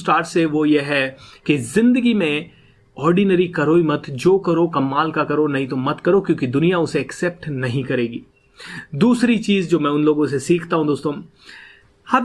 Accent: native